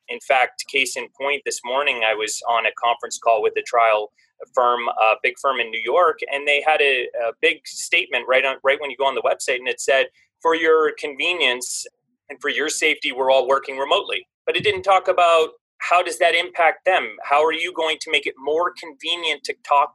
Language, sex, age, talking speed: English, male, 30-49, 225 wpm